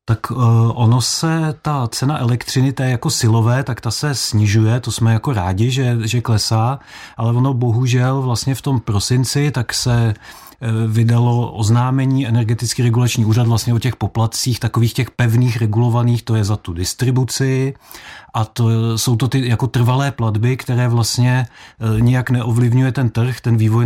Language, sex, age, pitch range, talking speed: Czech, male, 40-59, 115-130 Hz, 160 wpm